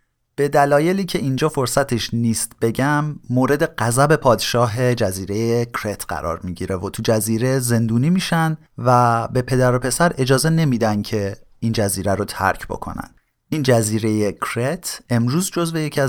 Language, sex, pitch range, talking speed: Persian, male, 110-140 Hz, 140 wpm